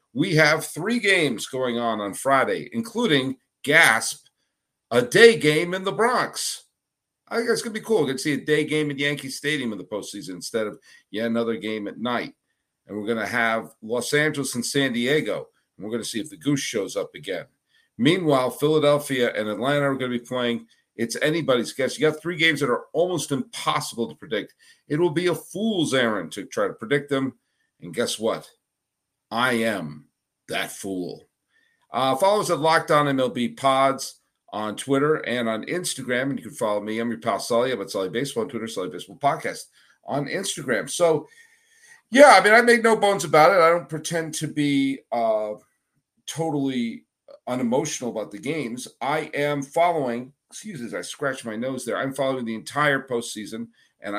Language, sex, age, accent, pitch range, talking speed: English, male, 50-69, American, 120-170 Hz, 190 wpm